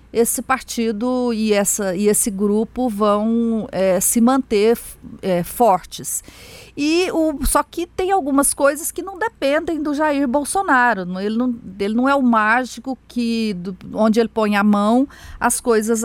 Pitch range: 210-255 Hz